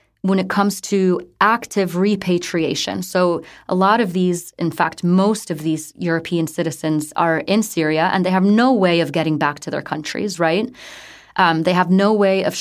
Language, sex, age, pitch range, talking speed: English, female, 20-39, 160-200 Hz, 185 wpm